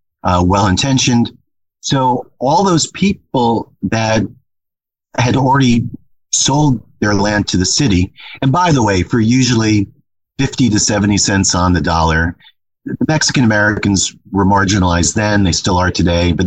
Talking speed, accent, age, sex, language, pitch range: 140 wpm, American, 40-59, male, English, 95-125 Hz